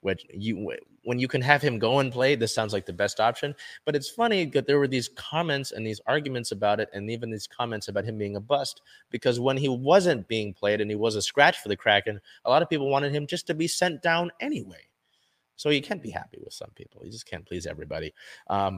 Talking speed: 250 wpm